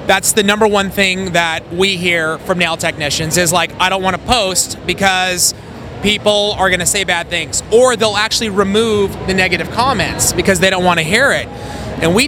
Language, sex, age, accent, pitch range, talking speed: English, male, 30-49, American, 165-210 Hz, 205 wpm